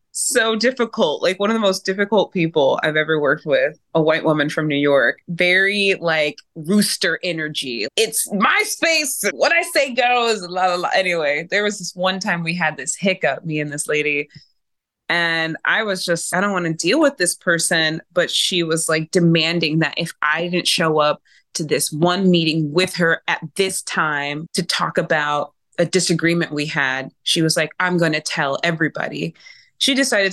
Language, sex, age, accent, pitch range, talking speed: English, female, 20-39, American, 155-210 Hz, 180 wpm